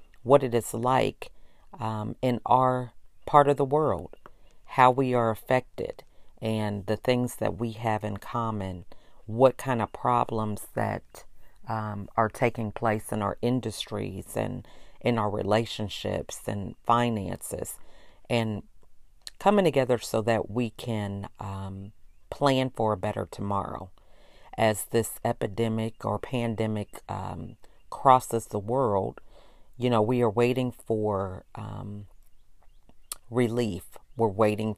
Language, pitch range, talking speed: English, 100-120 Hz, 125 wpm